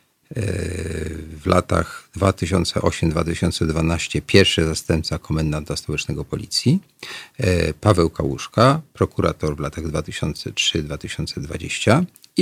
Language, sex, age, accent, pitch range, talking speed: Polish, male, 40-59, native, 80-105 Hz, 70 wpm